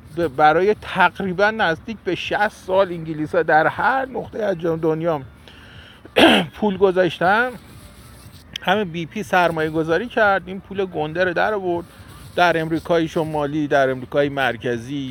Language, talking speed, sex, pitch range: Persian, 120 wpm, male, 145-200 Hz